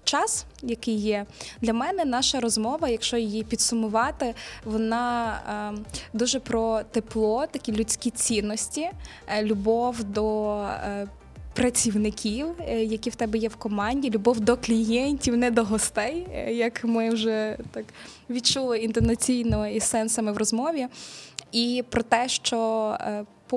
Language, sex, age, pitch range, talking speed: Ukrainian, female, 20-39, 215-240 Hz, 130 wpm